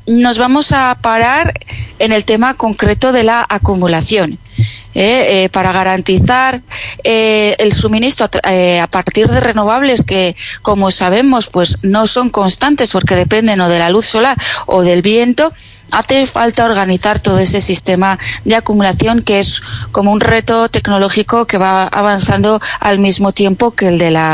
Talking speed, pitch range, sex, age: 165 wpm, 185-220 Hz, female, 30-49